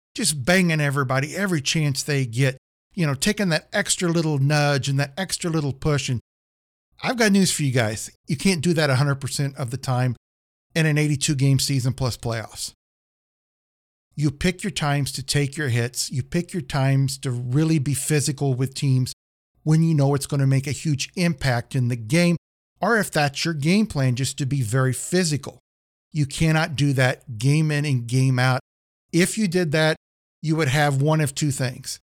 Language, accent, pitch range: English, American, 130-165 Hz